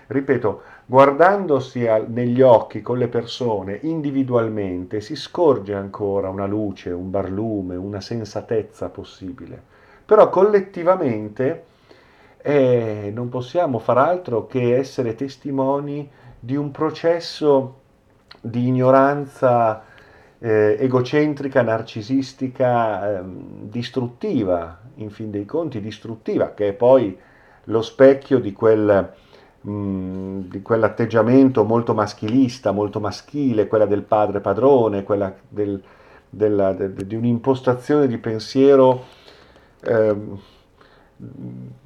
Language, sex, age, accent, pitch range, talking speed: Italian, male, 50-69, native, 105-135 Hz, 95 wpm